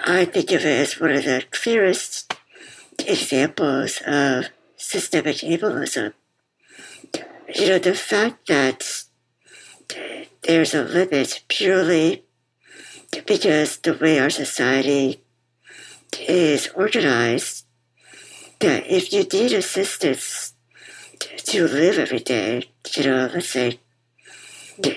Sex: male